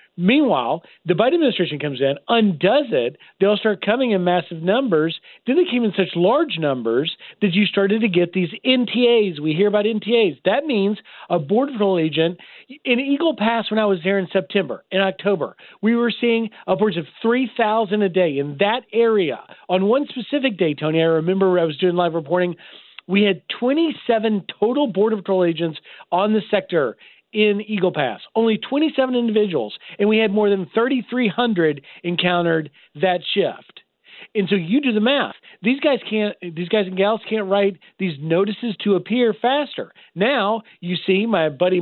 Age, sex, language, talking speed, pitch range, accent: 40-59, male, English, 175 wpm, 180-225 Hz, American